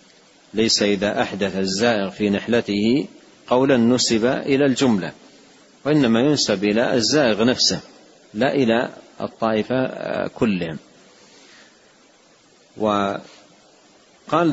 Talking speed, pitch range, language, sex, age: 85 wpm, 100-120 Hz, Arabic, male, 40-59